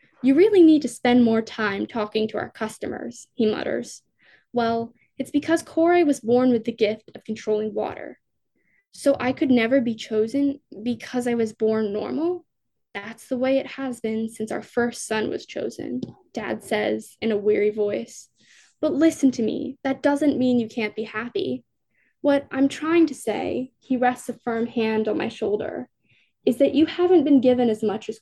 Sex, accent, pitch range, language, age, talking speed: female, American, 220-280 Hz, English, 10-29, 185 wpm